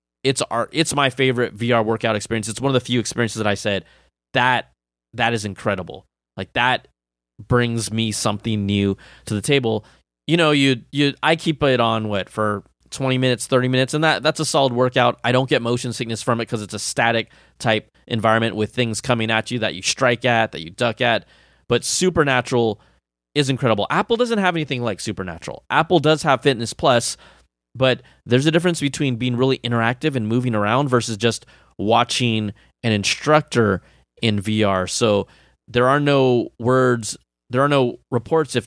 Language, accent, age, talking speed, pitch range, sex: English, American, 20-39, 185 wpm, 110-130 Hz, male